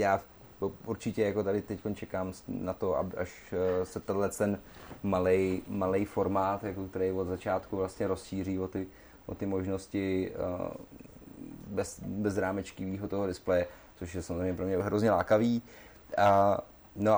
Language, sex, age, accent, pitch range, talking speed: Czech, male, 30-49, native, 90-105 Hz, 135 wpm